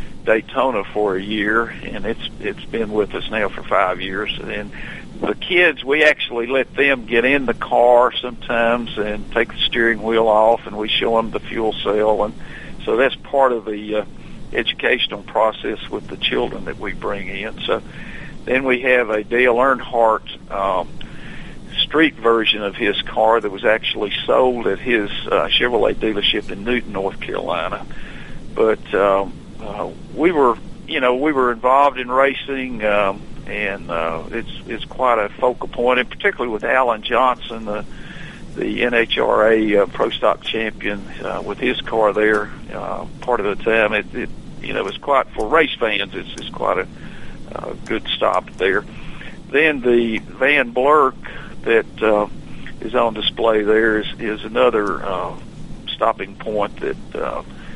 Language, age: English, 50-69